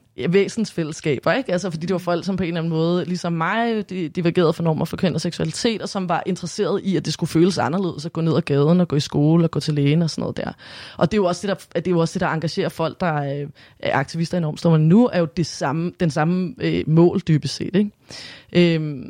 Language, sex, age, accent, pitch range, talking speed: Danish, female, 20-39, native, 170-210 Hz, 250 wpm